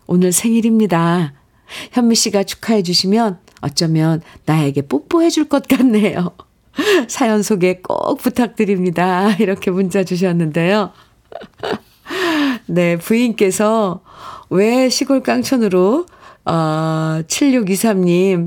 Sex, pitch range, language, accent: female, 170-230 Hz, Korean, native